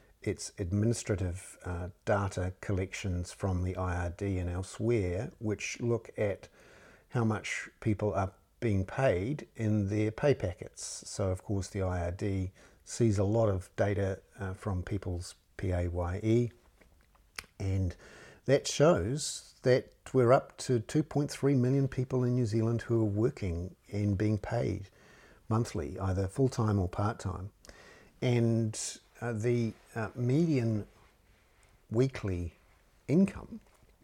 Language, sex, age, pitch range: English, male, 50-69, 90-115 Hz